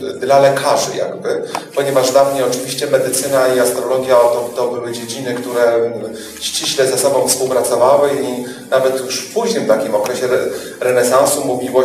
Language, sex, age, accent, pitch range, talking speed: Polish, male, 40-59, native, 115-140 Hz, 140 wpm